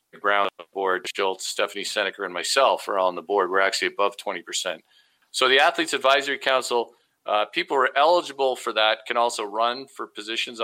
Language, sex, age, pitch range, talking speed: English, male, 40-59, 100-125 Hz, 180 wpm